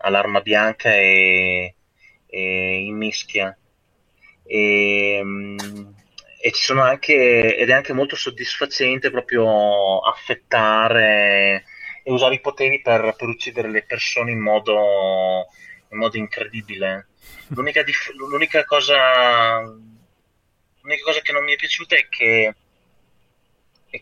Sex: male